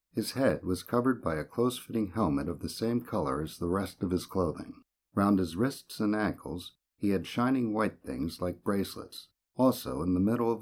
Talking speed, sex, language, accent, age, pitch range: 200 wpm, male, English, American, 50-69, 90-115 Hz